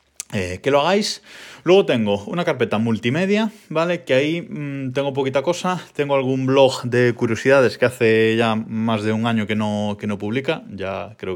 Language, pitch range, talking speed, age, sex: Spanish, 100-140 Hz, 175 wpm, 20-39, male